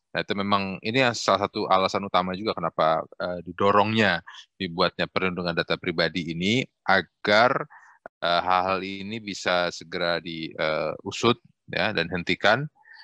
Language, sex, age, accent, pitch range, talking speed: Indonesian, male, 20-39, native, 90-100 Hz, 130 wpm